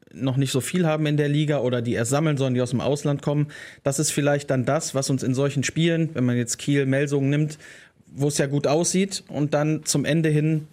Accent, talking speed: German, 245 wpm